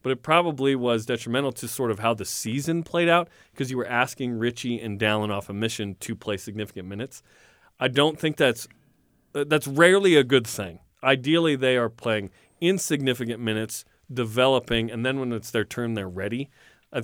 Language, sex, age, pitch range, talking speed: English, male, 30-49, 110-145 Hz, 185 wpm